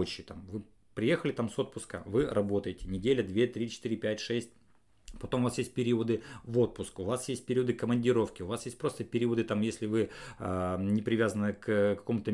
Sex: male